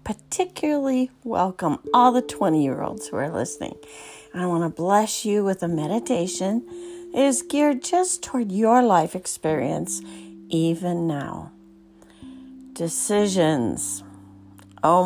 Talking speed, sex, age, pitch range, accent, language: 120 wpm, female, 50-69, 130-205 Hz, American, English